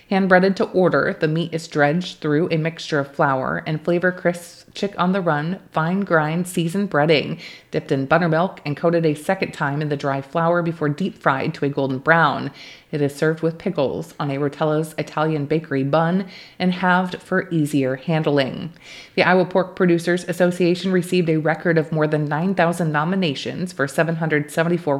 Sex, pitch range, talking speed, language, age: female, 155-180 Hz, 165 wpm, English, 30-49